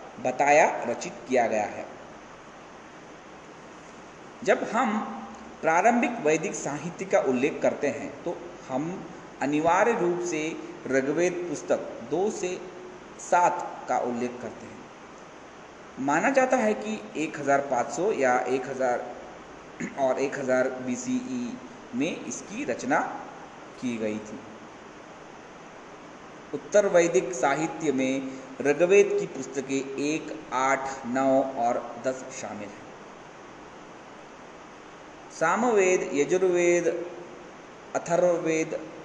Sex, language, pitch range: male, Hindi, 130-175 Hz